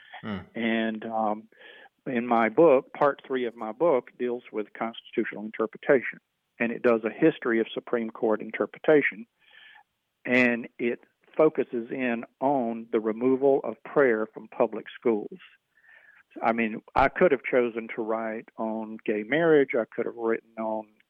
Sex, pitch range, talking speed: male, 110-135 Hz, 145 wpm